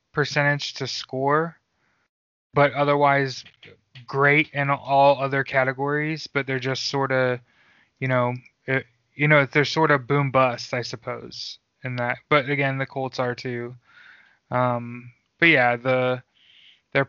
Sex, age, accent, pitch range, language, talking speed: male, 20-39, American, 125-145 Hz, English, 135 wpm